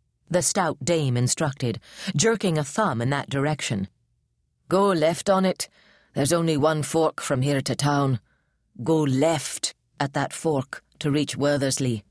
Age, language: 40-59, English